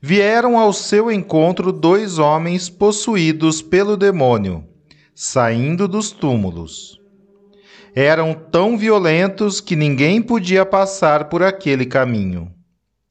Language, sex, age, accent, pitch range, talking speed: Portuguese, male, 40-59, Brazilian, 140-195 Hz, 100 wpm